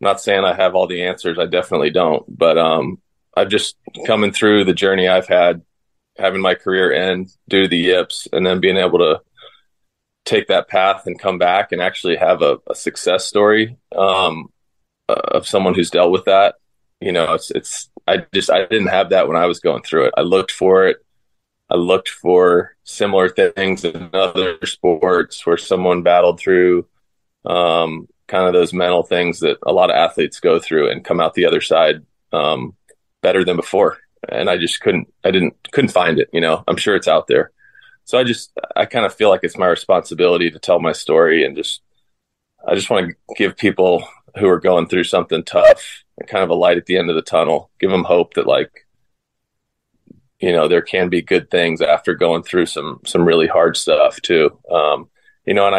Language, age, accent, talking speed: English, 20-39, American, 205 wpm